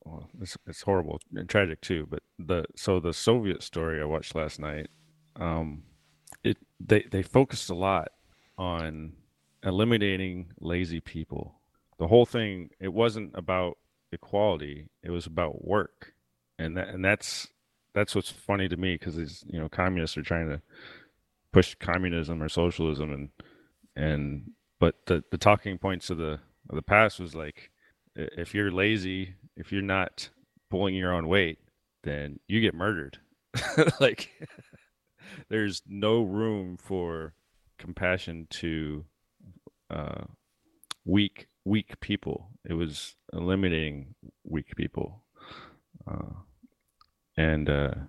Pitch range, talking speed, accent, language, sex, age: 80-100 Hz, 130 wpm, American, English, male, 30-49